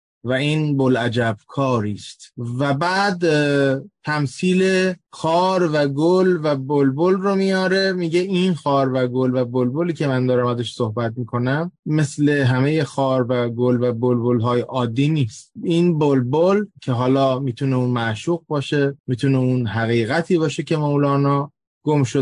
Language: Persian